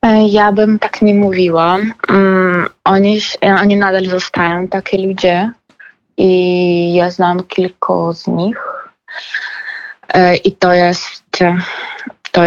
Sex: female